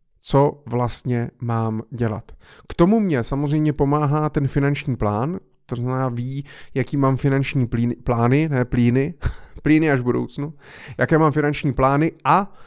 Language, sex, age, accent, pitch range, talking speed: Czech, male, 30-49, native, 125-145 Hz, 140 wpm